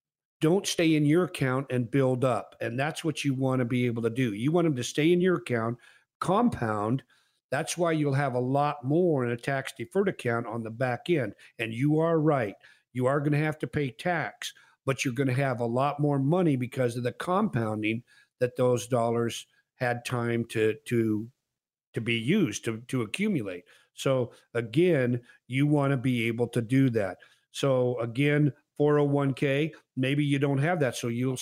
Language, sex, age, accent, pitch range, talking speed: English, male, 50-69, American, 120-150 Hz, 195 wpm